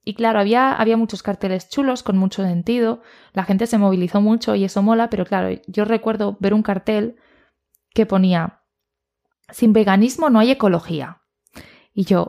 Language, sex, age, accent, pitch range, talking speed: Spanish, female, 20-39, Spanish, 185-225 Hz, 165 wpm